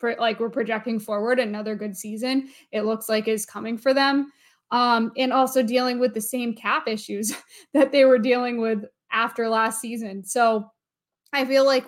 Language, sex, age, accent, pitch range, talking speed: English, female, 20-39, American, 215-245 Hz, 175 wpm